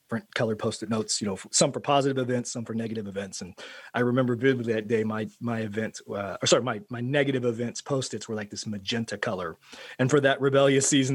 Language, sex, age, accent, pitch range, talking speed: English, male, 30-49, American, 110-140 Hz, 215 wpm